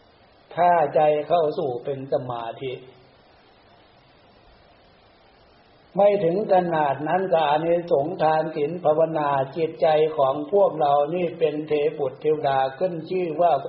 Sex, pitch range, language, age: male, 140-175 Hz, Thai, 60-79